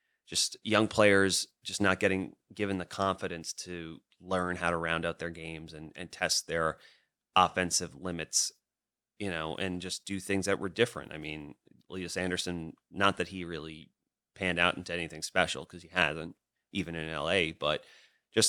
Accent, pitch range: American, 85-100 Hz